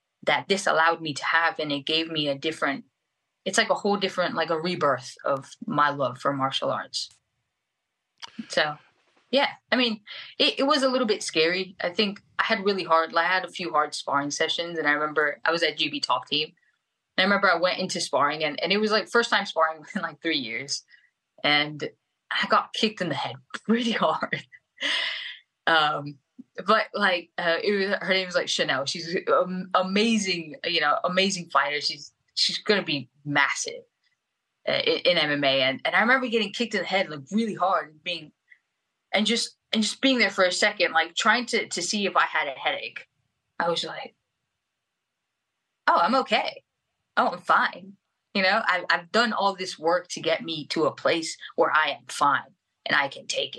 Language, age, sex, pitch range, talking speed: English, 20-39, female, 155-210 Hz, 200 wpm